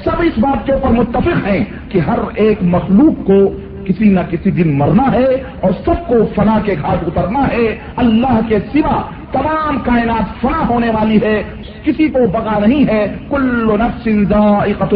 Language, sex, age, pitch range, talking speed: Urdu, male, 50-69, 215-255 Hz, 170 wpm